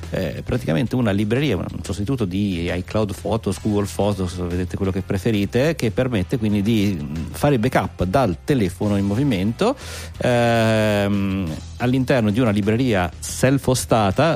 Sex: male